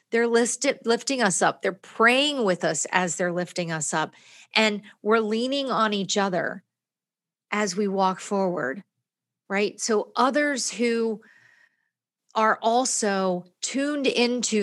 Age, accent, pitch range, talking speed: 40-59, American, 180-230 Hz, 130 wpm